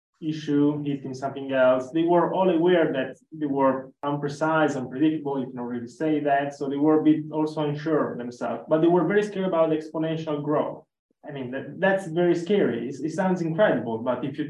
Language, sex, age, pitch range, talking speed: English, male, 20-39, 130-160 Hz, 205 wpm